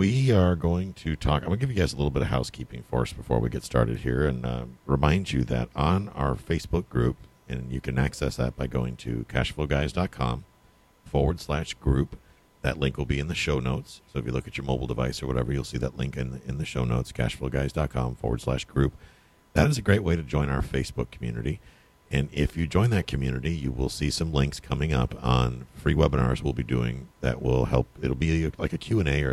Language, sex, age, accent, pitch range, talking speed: English, male, 50-69, American, 65-80 Hz, 230 wpm